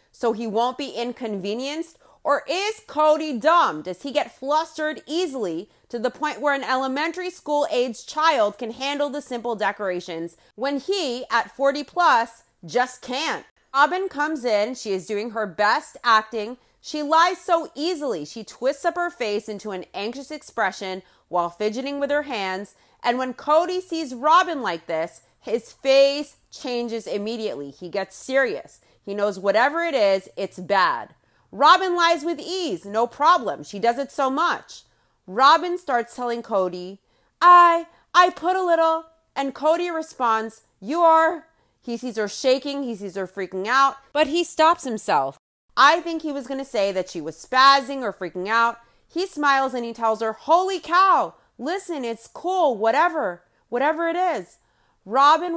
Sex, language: female, English